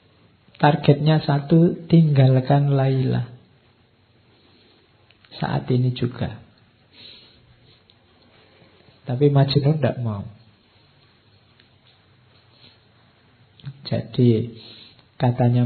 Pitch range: 115-140 Hz